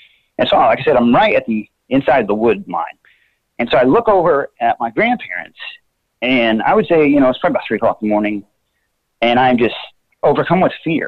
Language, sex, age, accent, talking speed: English, male, 30-49, American, 225 wpm